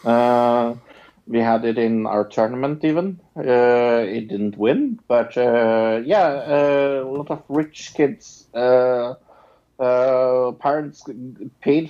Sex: male